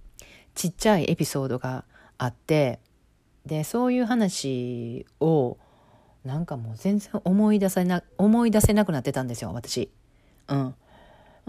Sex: female